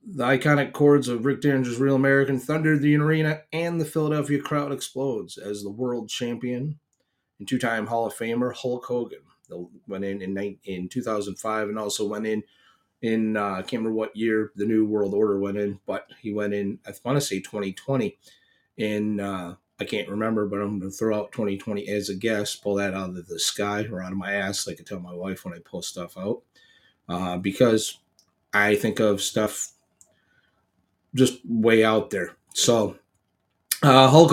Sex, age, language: male, 30-49, English